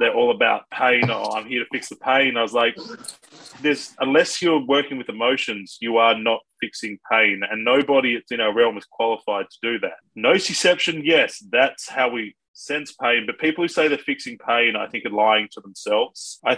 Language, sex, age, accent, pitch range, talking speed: English, male, 20-39, Australian, 110-140 Hz, 205 wpm